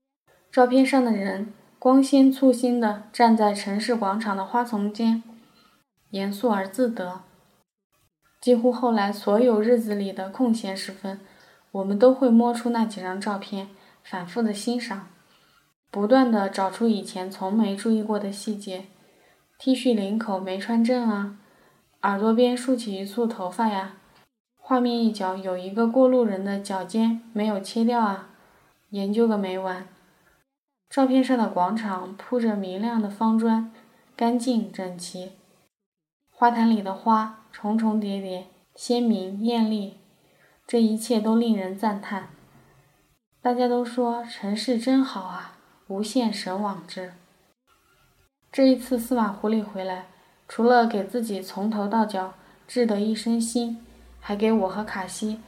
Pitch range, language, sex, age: 195-235 Hz, Chinese, female, 20-39